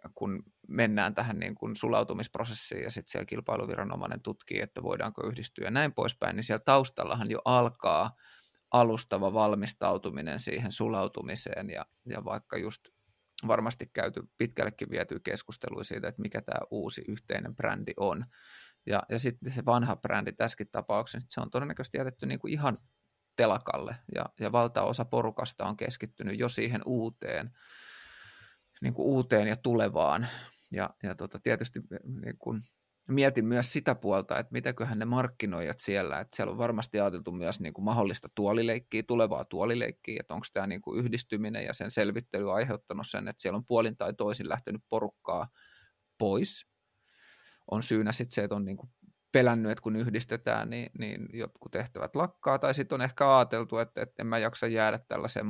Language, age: Finnish, 30-49